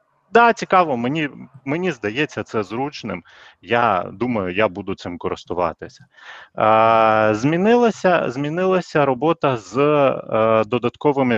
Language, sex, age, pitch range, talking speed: Ukrainian, male, 30-49, 105-140 Hz, 100 wpm